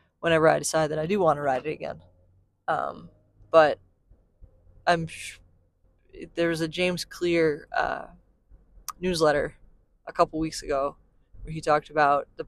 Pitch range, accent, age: 145-165 Hz, American, 20-39